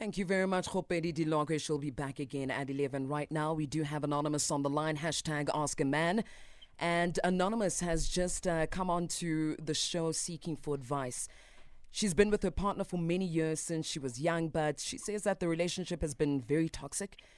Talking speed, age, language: 205 wpm, 30-49, English